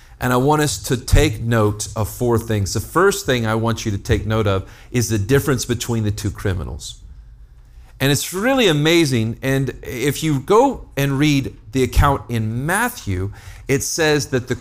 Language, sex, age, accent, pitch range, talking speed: English, male, 40-59, American, 105-135 Hz, 185 wpm